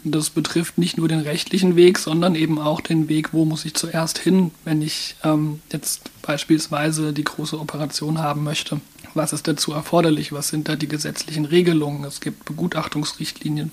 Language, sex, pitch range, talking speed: German, male, 155-170 Hz, 175 wpm